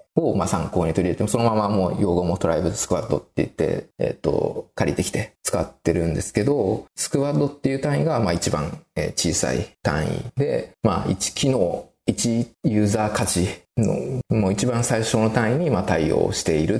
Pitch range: 85-125 Hz